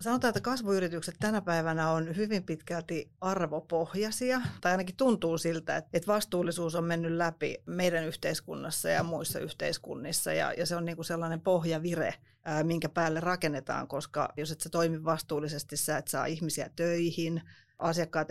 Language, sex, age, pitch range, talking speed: Finnish, female, 30-49, 155-175 Hz, 145 wpm